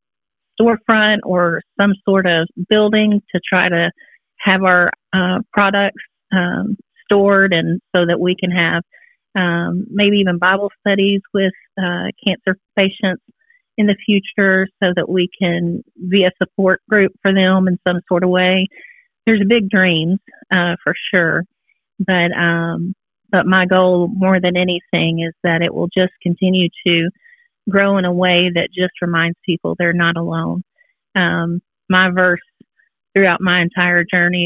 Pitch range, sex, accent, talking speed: 175-195 Hz, female, American, 155 wpm